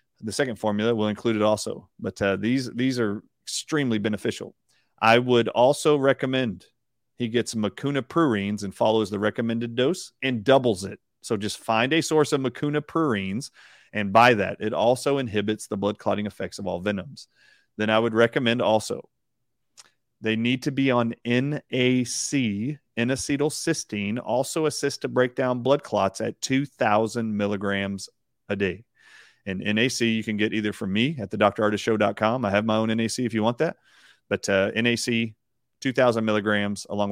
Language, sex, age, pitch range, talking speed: English, male, 40-59, 105-125 Hz, 165 wpm